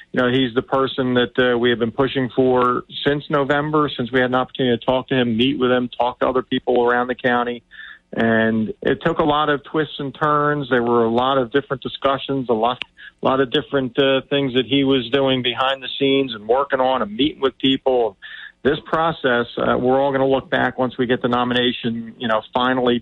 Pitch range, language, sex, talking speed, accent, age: 120-135 Hz, English, male, 225 wpm, American, 50-69